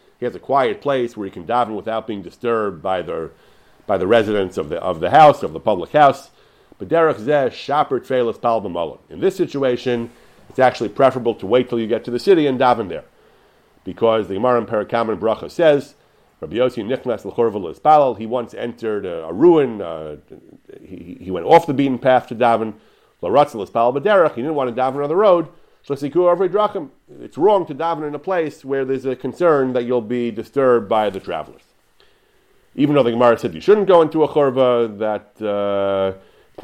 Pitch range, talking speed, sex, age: 115-150 Hz, 180 wpm, male, 40-59